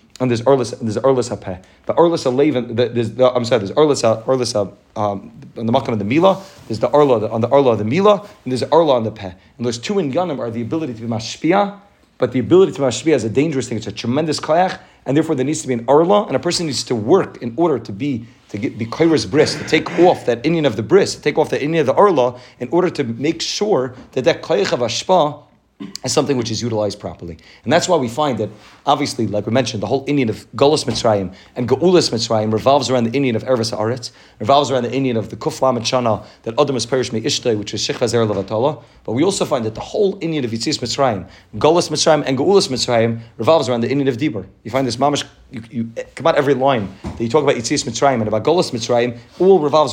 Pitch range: 115-145 Hz